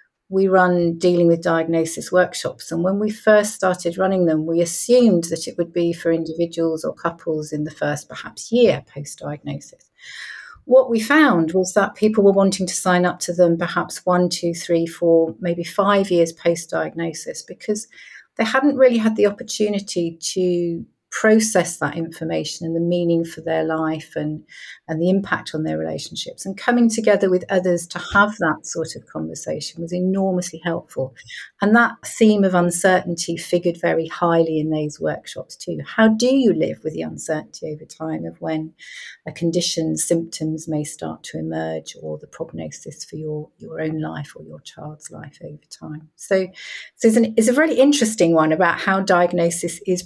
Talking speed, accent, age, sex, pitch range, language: 175 wpm, British, 40-59, female, 160-190 Hz, English